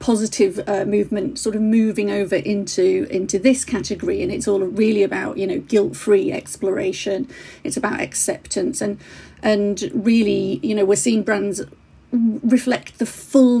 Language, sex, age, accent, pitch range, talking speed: English, female, 40-59, British, 200-230 Hz, 150 wpm